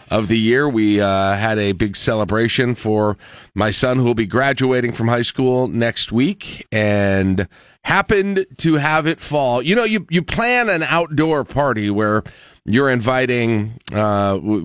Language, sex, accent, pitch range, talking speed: English, male, American, 110-135 Hz, 160 wpm